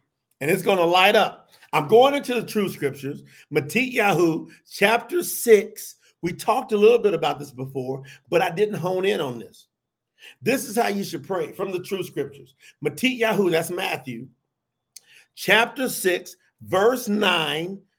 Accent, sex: American, male